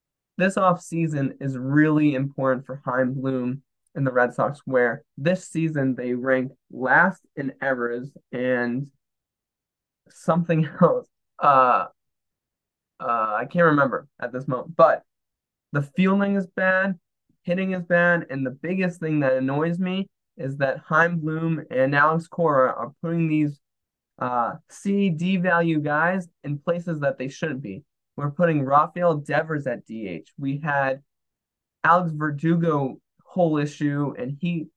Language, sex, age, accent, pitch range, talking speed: English, male, 20-39, American, 135-170 Hz, 140 wpm